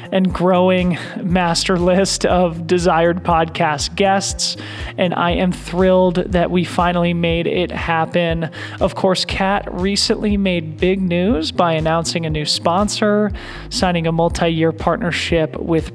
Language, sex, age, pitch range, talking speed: English, male, 20-39, 165-185 Hz, 130 wpm